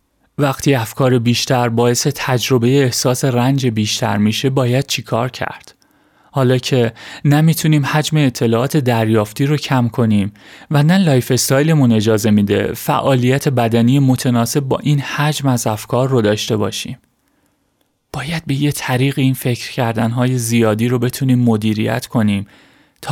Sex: male